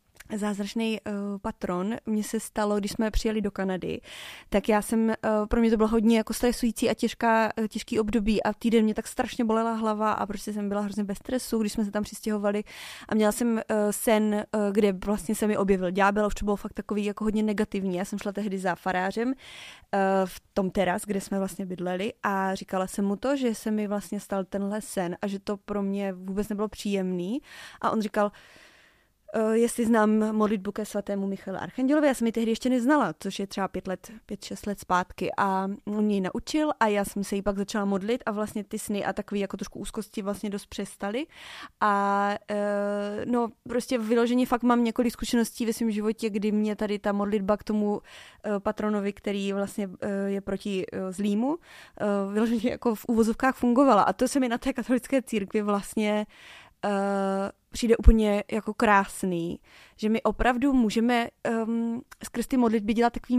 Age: 20-39